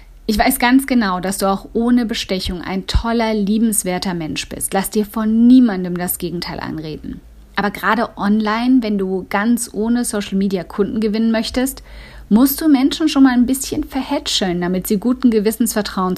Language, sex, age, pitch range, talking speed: German, female, 50-69, 180-235 Hz, 165 wpm